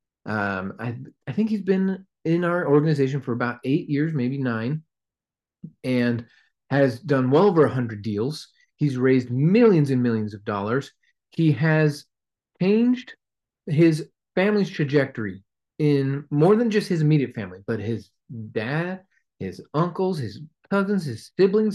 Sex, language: male, English